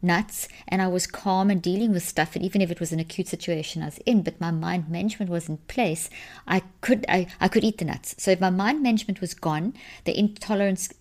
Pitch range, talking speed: 165-200 Hz, 240 wpm